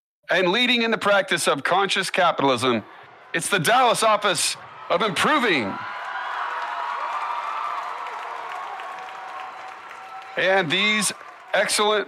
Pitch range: 145-195 Hz